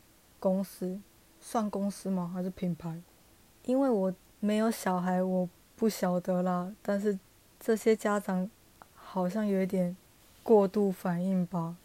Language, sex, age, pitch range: Chinese, female, 20-39, 180-210 Hz